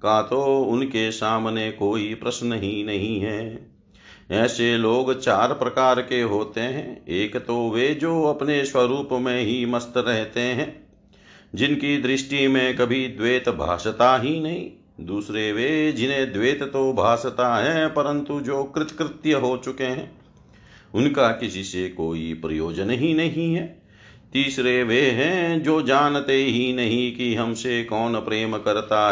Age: 50-69